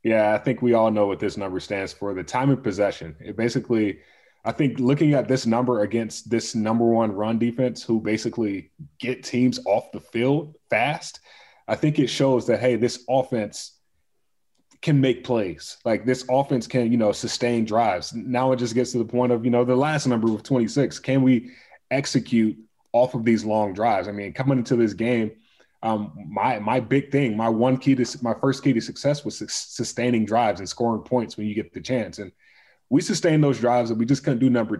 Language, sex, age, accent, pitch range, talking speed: English, male, 20-39, American, 110-130 Hz, 210 wpm